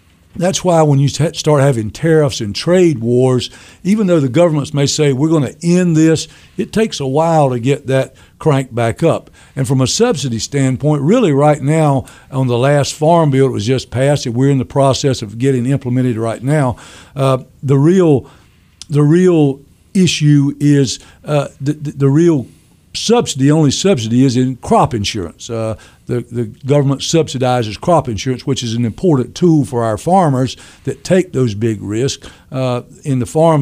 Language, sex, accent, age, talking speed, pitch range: English, male, American, 60-79, 185 wpm, 125-150 Hz